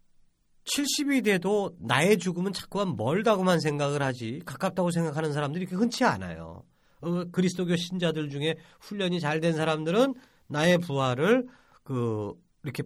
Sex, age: male, 40-59